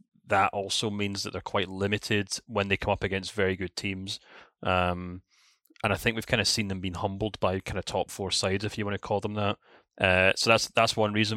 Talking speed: 235 wpm